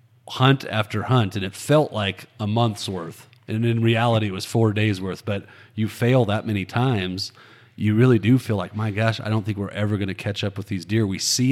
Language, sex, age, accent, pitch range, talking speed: English, male, 40-59, American, 100-120 Hz, 235 wpm